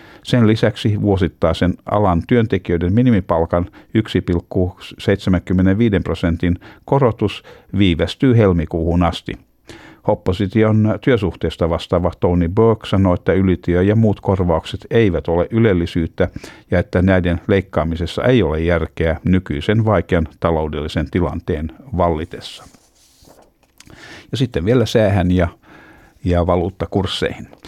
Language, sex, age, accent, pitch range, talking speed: Finnish, male, 60-79, native, 85-105 Hz, 100 wpm